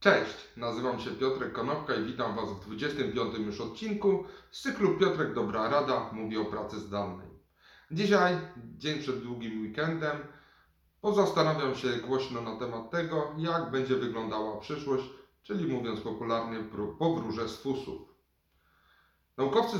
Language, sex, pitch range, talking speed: Polish, male, 120-150 Hz, 130 wpm